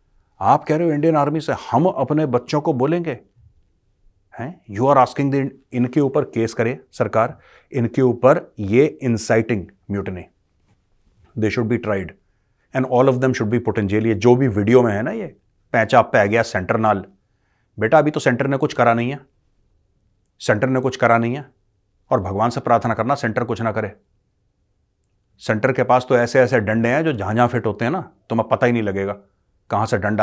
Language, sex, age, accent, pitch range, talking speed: Hindi, male, 30-49, native, 100-125 Hz, 195 wpm